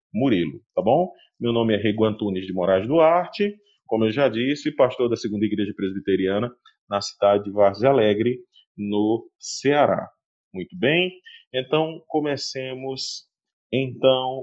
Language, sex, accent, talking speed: Portuguese, male, Brazilian, 130 wpm